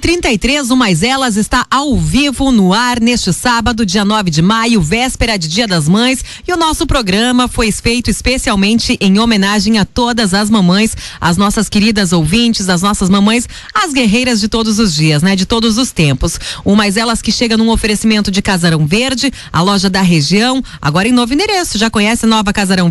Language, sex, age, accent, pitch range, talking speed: Portuguese, female, 30-49, Brazilian, 195-240 Hz, 195 wpm